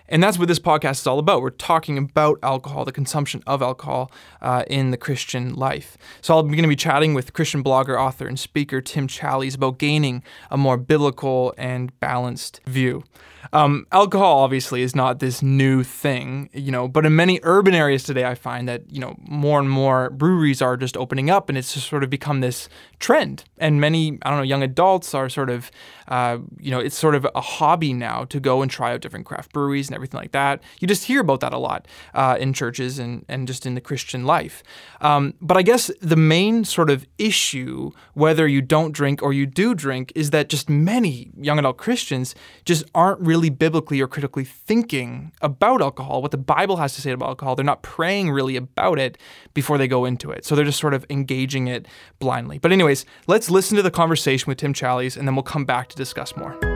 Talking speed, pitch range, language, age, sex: 215 wpm, 130-155 Hz, English, 20-39, male